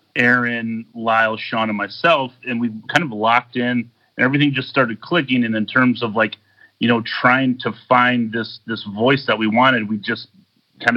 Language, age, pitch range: English, 30-49, 110-130 Hz